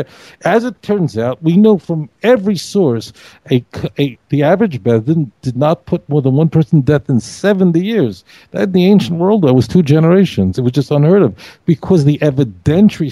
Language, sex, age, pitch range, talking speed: English, male, 60-79, 120-170 Hz, 190 wpm